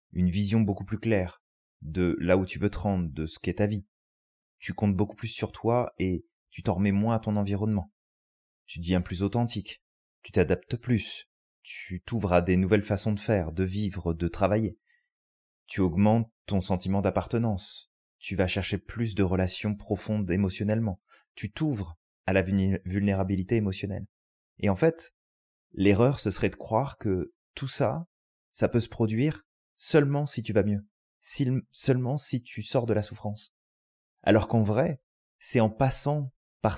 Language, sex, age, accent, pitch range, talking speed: French, male, 30-49, French, 95-115 Hz, 170 wpm